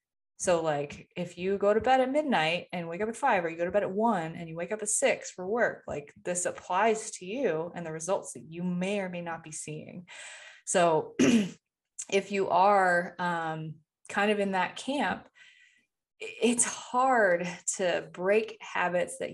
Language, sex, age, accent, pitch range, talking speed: English, female, 20-39, American, 160-210 Hz, 190 wpm